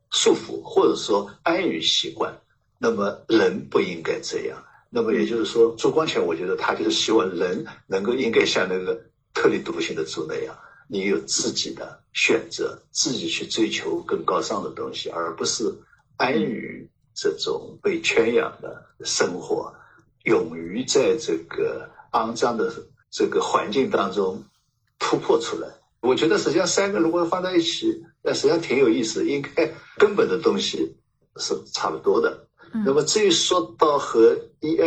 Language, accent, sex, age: Chinese, native, male, 60-79